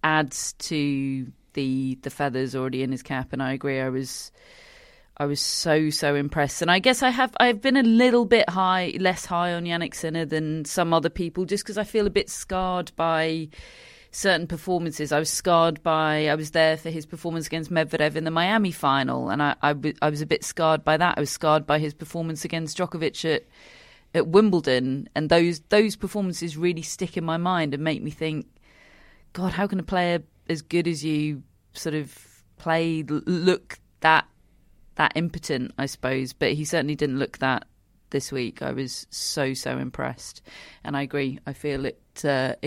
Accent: British